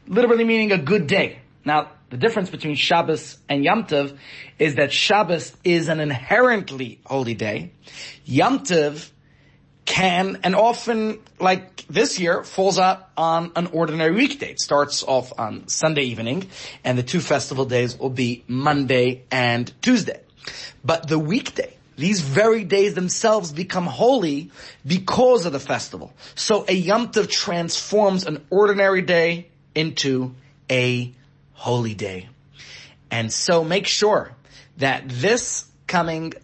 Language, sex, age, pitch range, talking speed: English, male, 30-49, 135-180 Hz, 135 wpm